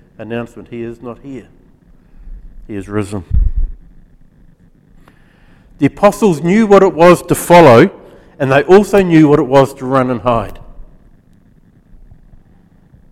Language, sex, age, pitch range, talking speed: English, male, 50-69, 110-145 Hz, 125 wpm